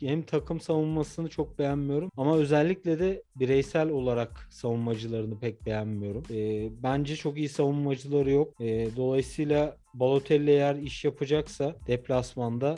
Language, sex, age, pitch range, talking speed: Turkish, male, 40-59, 120-140 Hz, 120 wpm